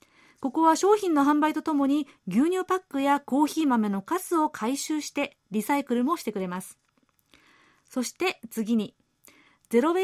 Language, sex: Japanese, female